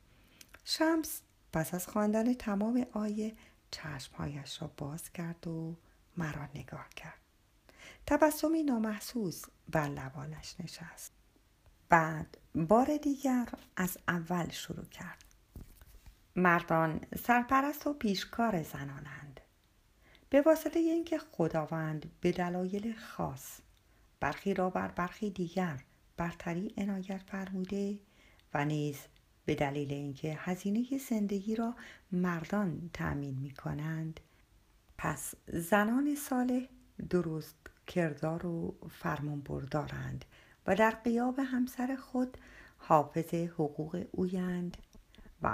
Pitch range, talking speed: 155-230 Hz, 95 wpm